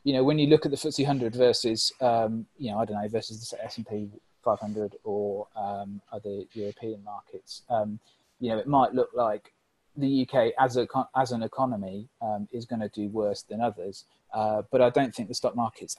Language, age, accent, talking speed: English, 30-49, British, 205 wpm